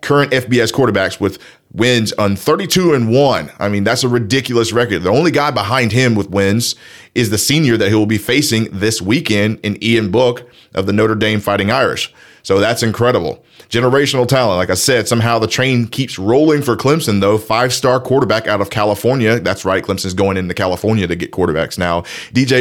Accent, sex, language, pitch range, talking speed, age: American, male, English, 100-125 Hz, 190 wpm, 30-49